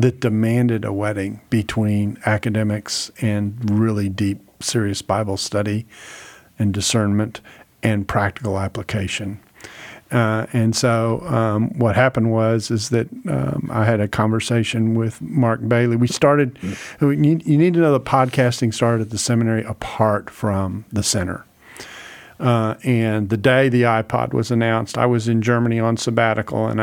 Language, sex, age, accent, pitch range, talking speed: English, male, 50-69, American, 110-125 Hz, 145 wpm